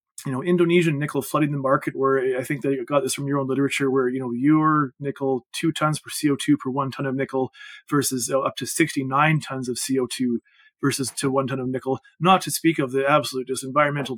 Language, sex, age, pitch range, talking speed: English, male, 30-49, 135-165 Hz, 225 wpm